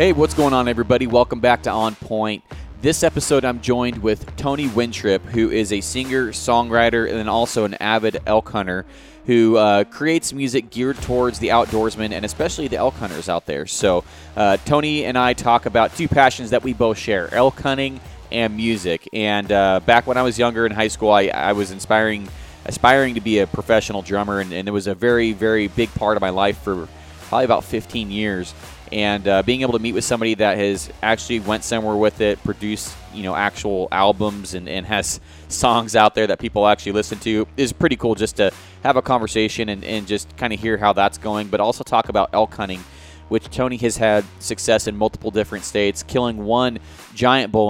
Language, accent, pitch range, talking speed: English, American, 100-120 Hz, 205 wpm